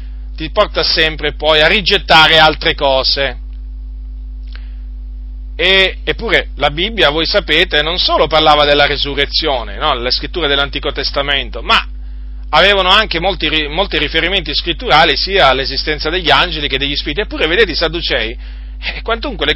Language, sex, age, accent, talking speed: Italian, male, 40-59, native, 140 wpm